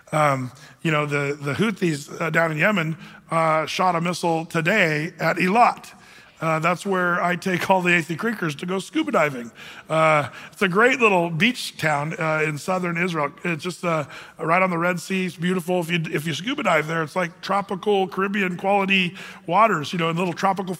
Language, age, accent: English, 40-59, American